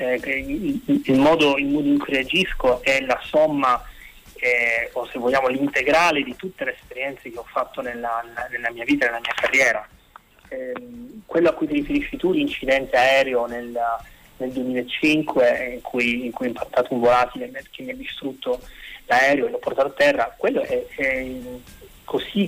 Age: 30-49